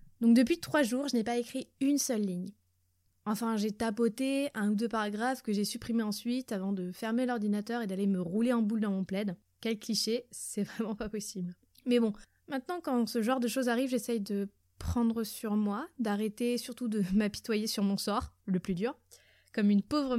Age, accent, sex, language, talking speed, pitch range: 20-39, French, female, French, 200 wpm, 200-235 Hz